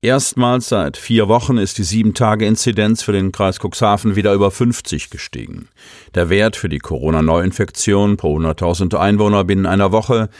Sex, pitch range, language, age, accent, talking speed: male, 90-115 Hz, German, 50-69, German, 150 wpm